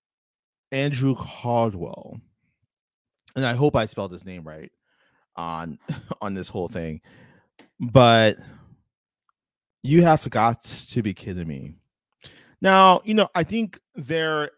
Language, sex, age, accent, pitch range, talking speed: English, male, 30-49, American, 95-120 Hz, 120 wpm